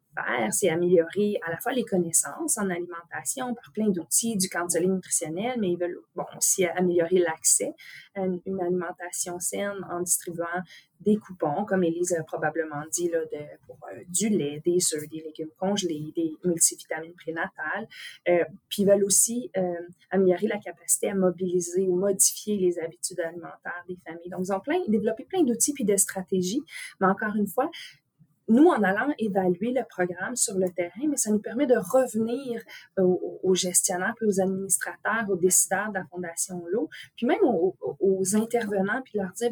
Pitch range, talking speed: 175-230 Hz, 175 wpm